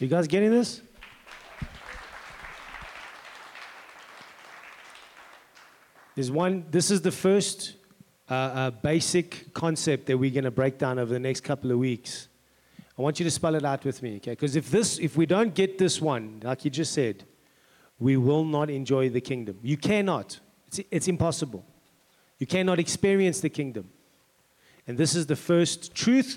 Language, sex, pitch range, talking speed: English, male, 135-190 Hz, 155 wpm